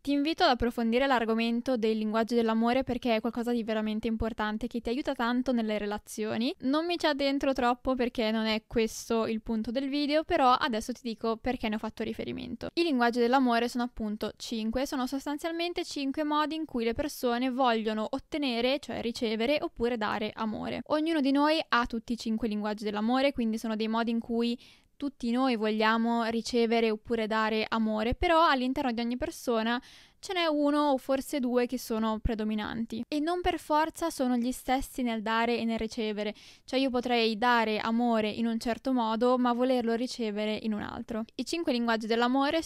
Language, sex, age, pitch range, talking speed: Italian, female, 10-29, 225-275 Hz, 185 wpm